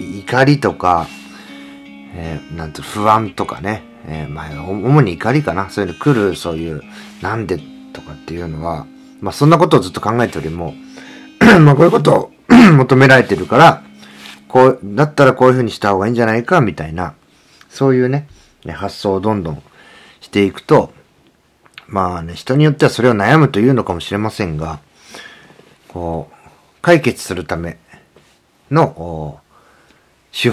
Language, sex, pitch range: Japanese, male, 85-130 Hz